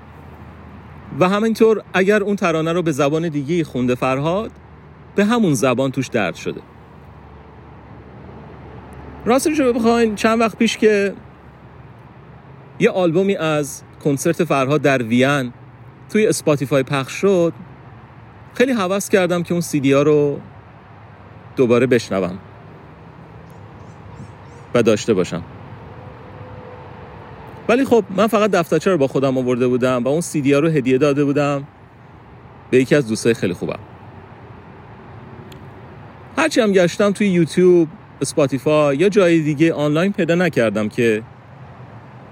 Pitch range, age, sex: 120-175 Hz, 40-59, male